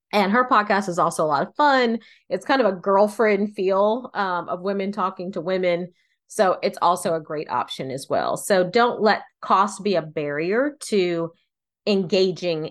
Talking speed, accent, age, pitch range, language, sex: 180 wpm, American, 30-49, 170-220 Hz, English, female